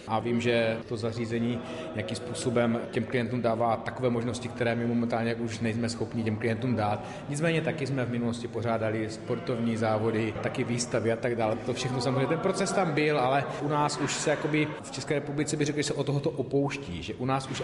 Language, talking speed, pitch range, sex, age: Slovak, 210 wpm, 115-140 Hz, male, 30-49